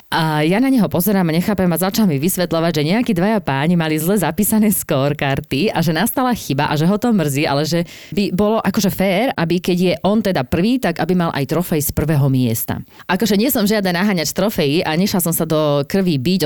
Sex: female